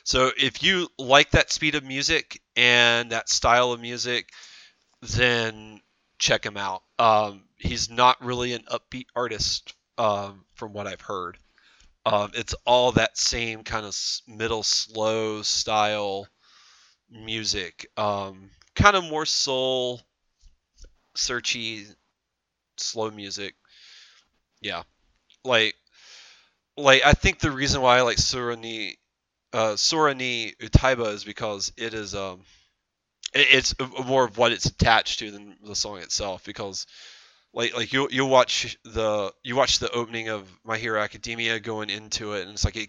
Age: 30-49